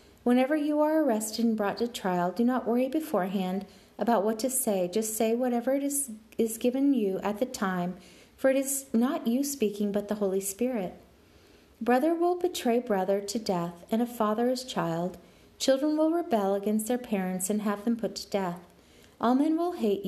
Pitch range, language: 195-260 Hz, English